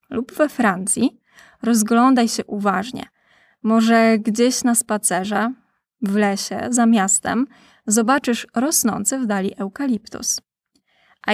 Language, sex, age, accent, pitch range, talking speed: Polish, female, 20-39, native, 210-245 Hz, 105 wpm